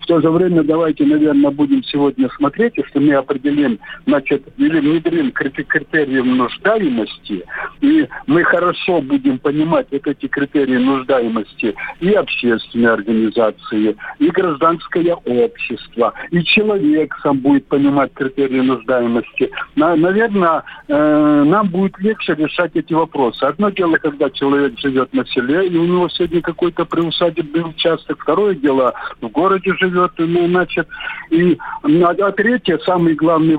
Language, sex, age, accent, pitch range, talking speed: Russian, male, 50-69, native, 140-215 Hz, 130 wpm